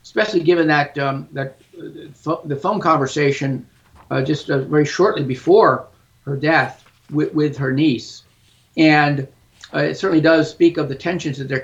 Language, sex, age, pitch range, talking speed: English, male, 50-69, 130-160 Hz, 160 wpm